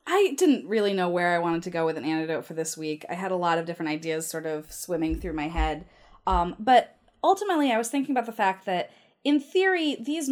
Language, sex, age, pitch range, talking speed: English, female, 20-39, 170-220 Hz, 240 wpm